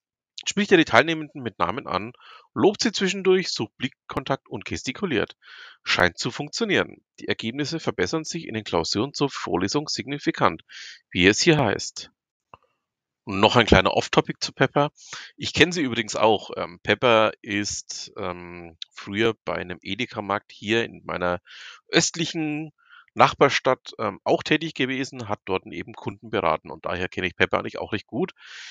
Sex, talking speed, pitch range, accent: male, 150 wpm, 100-160 Hz, German